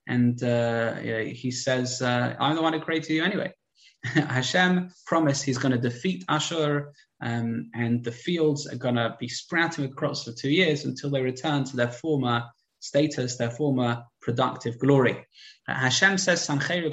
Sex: male